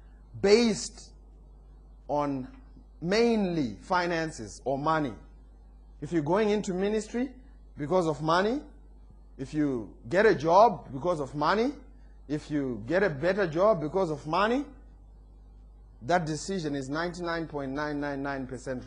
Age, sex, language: 30-49, male, English